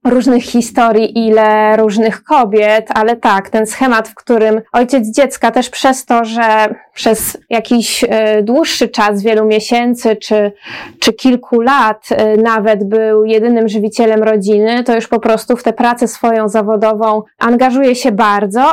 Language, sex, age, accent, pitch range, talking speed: Polish, female, 20-39, native, 220-265 Hz, 140 wpm